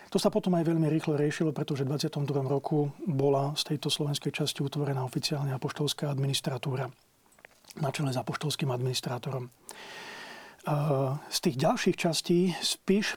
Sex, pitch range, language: male, 140-165 Hz, Slovak